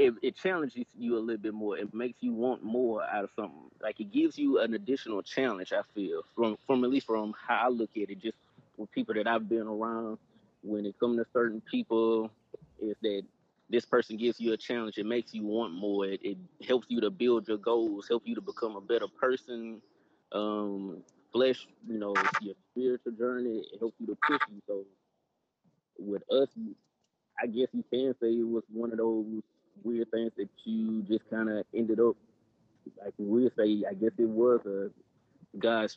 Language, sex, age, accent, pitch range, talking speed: English, male, 20-39, American, 110-125 Hz, 200 wpm